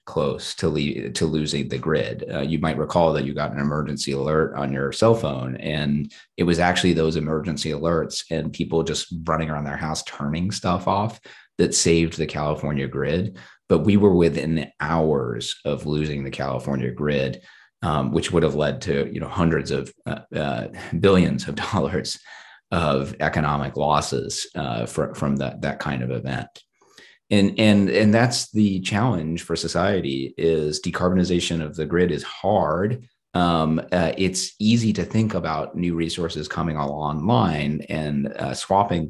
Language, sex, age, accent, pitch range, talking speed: English, male, 30-49, American, 75-85 Hz, 165 wpm